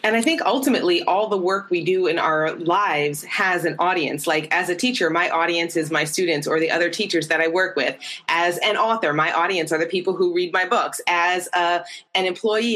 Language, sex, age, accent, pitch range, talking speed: English, female, 20-39, American, 165-205 Hz, 225 wpm